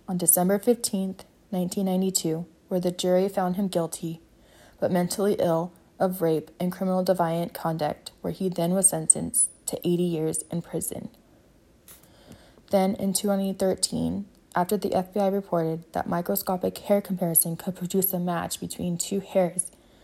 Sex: female